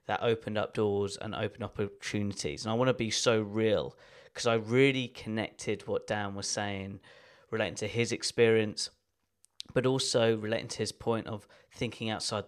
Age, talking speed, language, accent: 20-39, 170 wpm, English, British